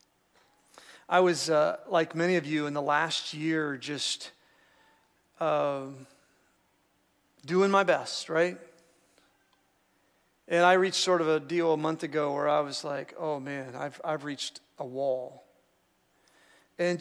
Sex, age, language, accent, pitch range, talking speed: male, 40-59, English, American, 150-175 Hz, 140 wpm